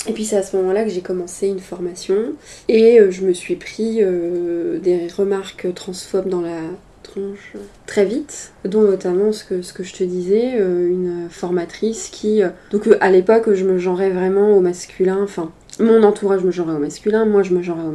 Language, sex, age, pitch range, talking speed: French, female, 20-39, 180-210 Hz, 195 wpm